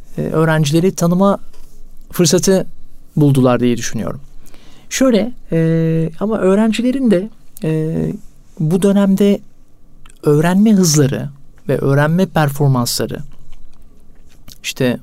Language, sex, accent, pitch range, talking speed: Turkish, male, native, 140-190 Hz, 80 wpm